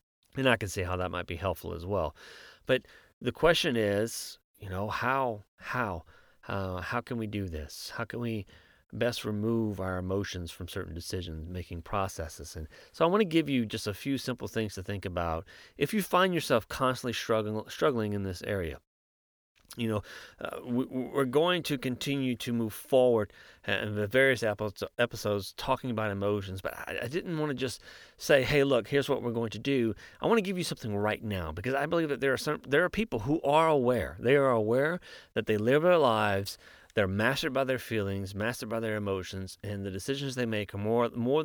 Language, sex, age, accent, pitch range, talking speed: English, male, 30-49, American, 100-130 Hz, 205 wpm